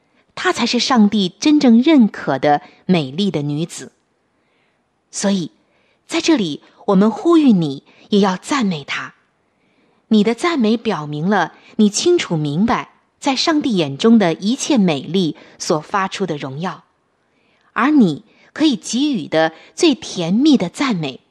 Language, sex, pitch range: Chinese, female, 170-255 Hz